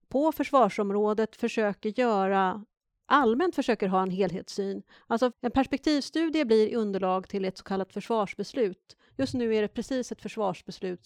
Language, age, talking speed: Swedish, 40-59, 140 wpm